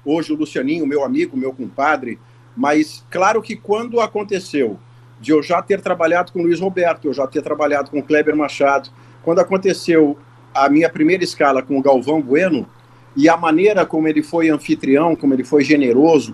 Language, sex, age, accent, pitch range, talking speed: Portuguese, male, 50-69, Brazilian, 135-175 Hz, 185 wpm